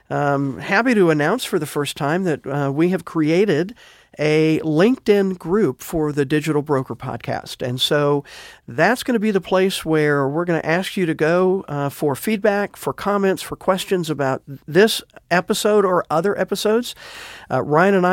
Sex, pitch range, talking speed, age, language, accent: male, 140-180 Hz, 175 wpm, 50-69, English, American